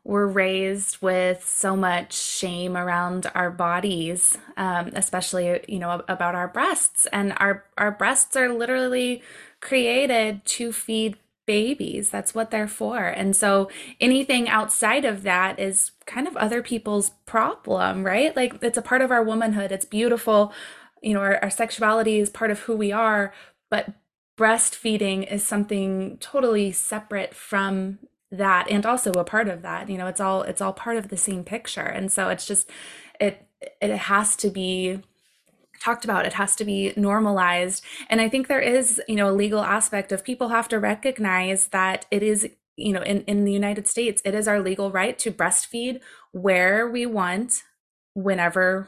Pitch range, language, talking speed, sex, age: 190-225 Hz, English, 170 wpm, female, 20-39